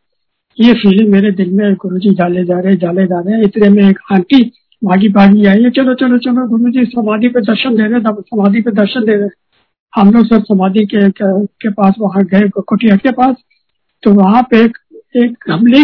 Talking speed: 205 wpm